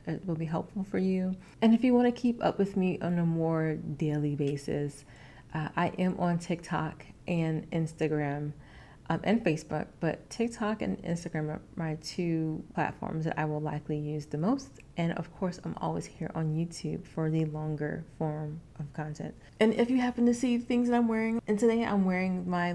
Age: 30-49